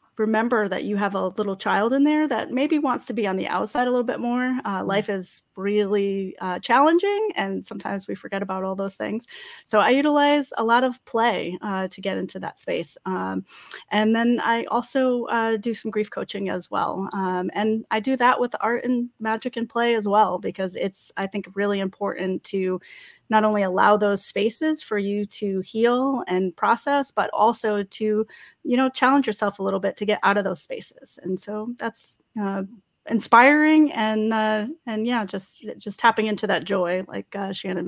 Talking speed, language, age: 200 wpm, English, 30-49